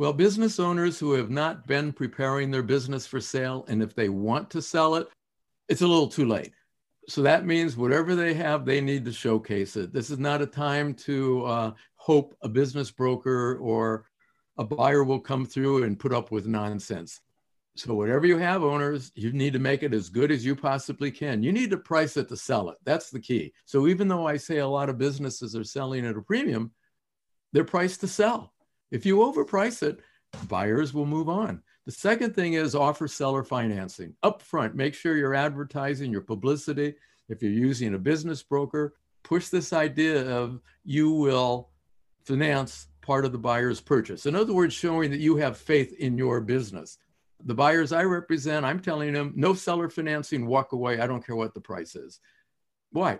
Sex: male